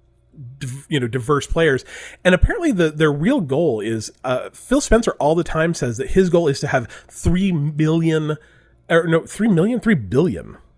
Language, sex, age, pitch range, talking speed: English, male, 30-49, 120-165 Hz, 150 wpm